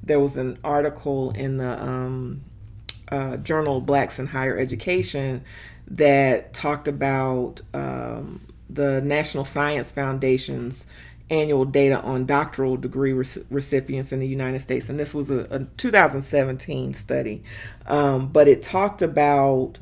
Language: English